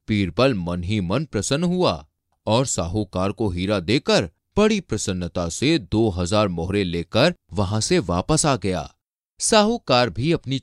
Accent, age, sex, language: native, 30-49, male, Hindi